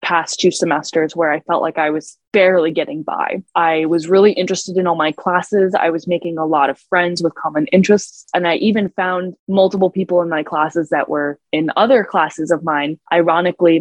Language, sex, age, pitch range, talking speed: English, female, 20-39, 155-185 Hz, 205 wpm